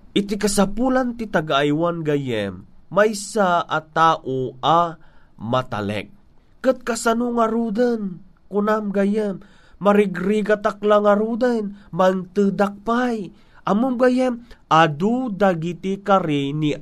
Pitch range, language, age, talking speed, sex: 170-220 Hz, Filipino, 30-49, 75 wpm, male